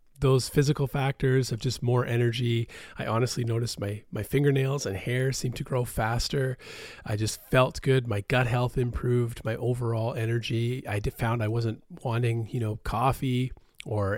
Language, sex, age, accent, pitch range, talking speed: English, male, 40-59, American, 110-130 Hz, 165 wpm